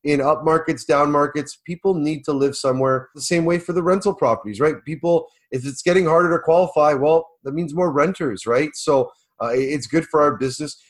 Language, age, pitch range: English, 30-49, 135-175 Hz